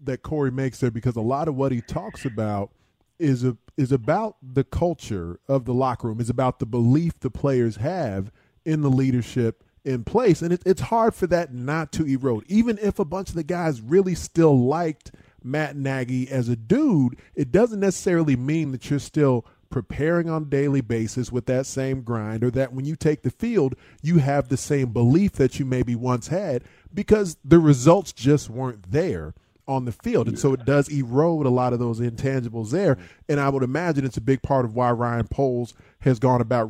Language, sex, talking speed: English, male, 205 wpm